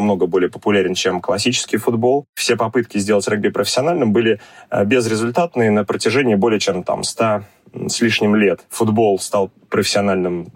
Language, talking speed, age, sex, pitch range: Russian, 140 wpm, 20-39, male, 100-120 Hz